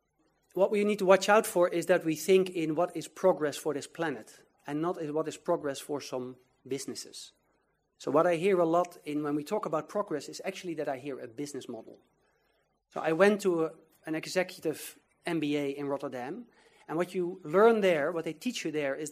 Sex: male